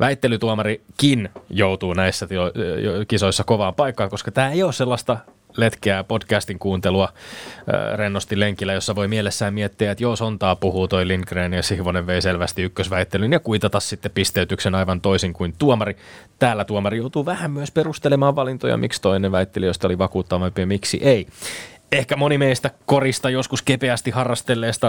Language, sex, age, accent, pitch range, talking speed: Finnish, male, 20-39, native, 95-120 Hz, 160 wpm